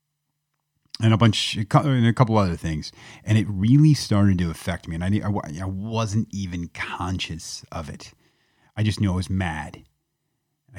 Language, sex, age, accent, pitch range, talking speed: English, male, 30-49, American, 90-120 Hz, 170 wpm